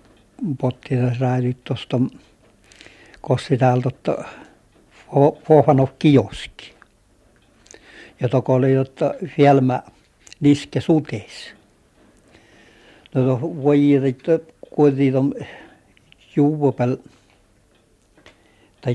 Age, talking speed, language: 60-79, 55 wpm, Finnish